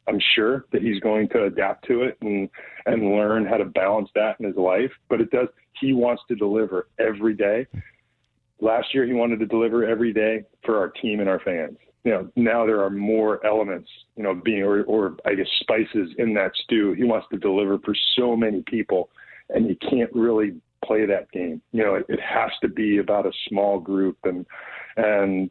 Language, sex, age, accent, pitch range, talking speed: English, male, 40-59, American, 100-120 Hz, 205 wpm